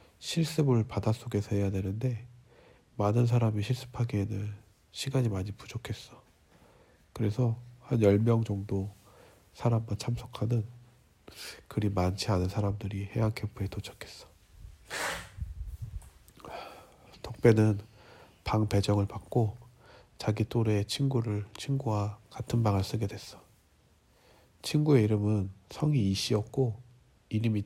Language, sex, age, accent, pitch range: Korean, male, 40-59, native, 100-120 Hz